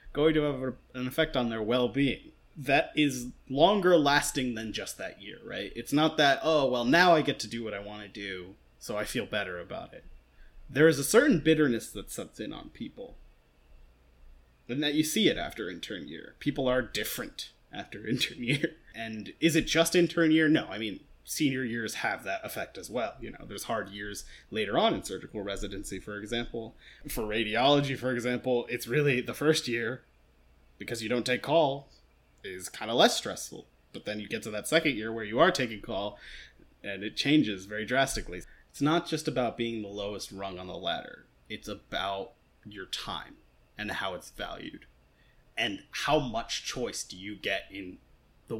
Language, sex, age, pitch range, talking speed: English, male, 20-39, 100-145 Hz, 190 wpm